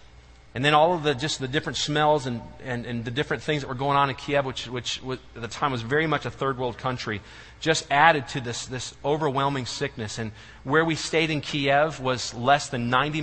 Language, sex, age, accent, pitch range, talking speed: English, male, 40-59, American, 120-165 Hz, 230 wpm